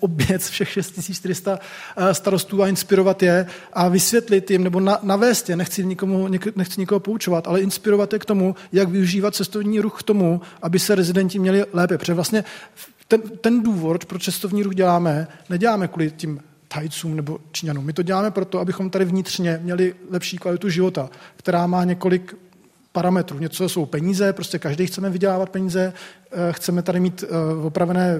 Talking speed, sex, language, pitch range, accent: 160 wpm, male, Czech, 180-200 Hz, native